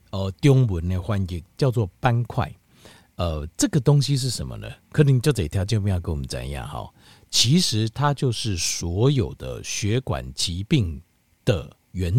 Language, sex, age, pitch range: Chinese, male, 50-69, 95-135 Hz